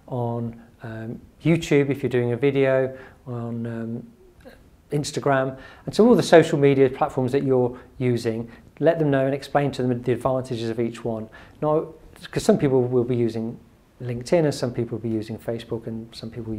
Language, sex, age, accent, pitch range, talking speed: English, male, 40-59, British, 120-150 Hz, 185 wpm